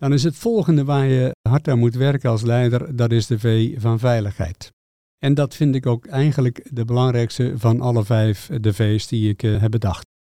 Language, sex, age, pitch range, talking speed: Dutch, male, 50-69, 115-135 Hz, 205 wpm